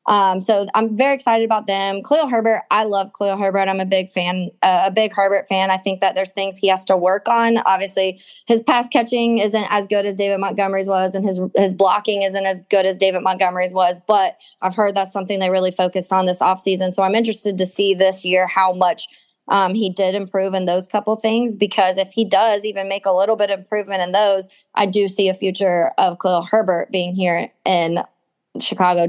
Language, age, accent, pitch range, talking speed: English, 20-39, American, 185-210 Hz, 220 wpm